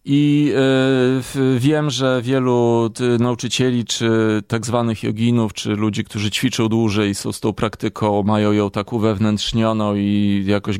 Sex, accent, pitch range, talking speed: male, native, 100-125 Hz, 135 wpm